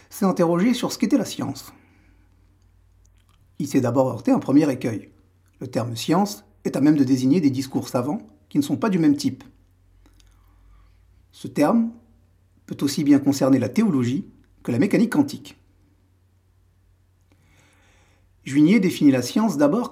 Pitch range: 95-150 Hz